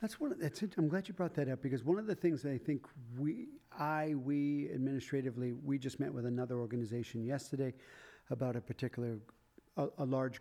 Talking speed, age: 210 wpm, 50-69